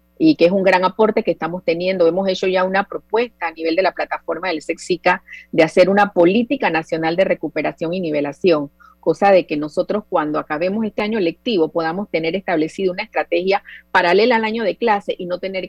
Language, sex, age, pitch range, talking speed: Spanish, female, 40-59, 165-200 Hz, 200 wpm